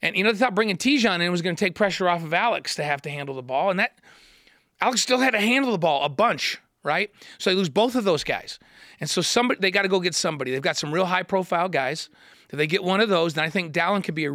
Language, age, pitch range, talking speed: English, 40-59, 145-195 Hz, 295 wpm